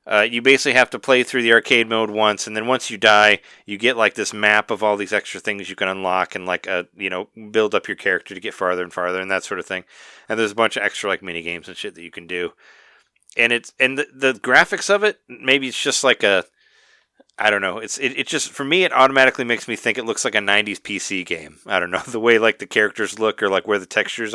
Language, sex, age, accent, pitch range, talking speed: English, male, 30-49, American, 100-130 Hz, 275 wpm